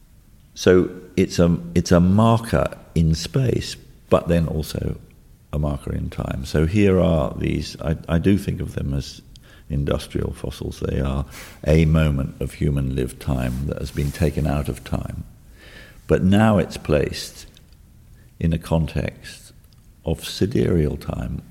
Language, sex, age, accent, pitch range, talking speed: English, male, 50-69, British, 75-90 Hz, 145 wpm